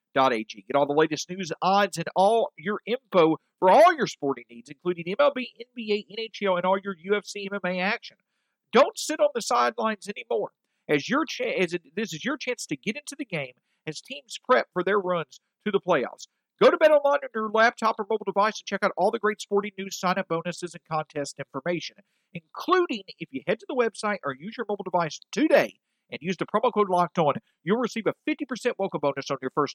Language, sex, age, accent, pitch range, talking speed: English, male, 50-69, American, 165-225 Hz, 215 wpm